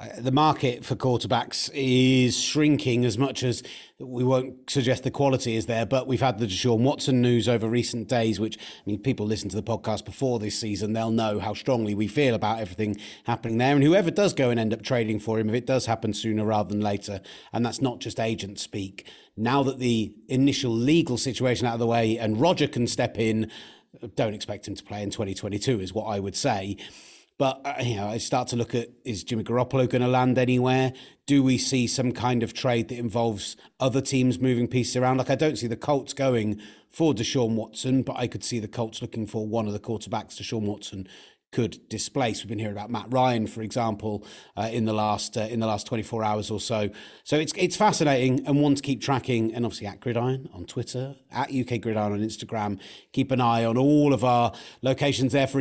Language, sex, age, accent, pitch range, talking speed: English, male, 30-49, British, 110-130 Hz, 215 wpm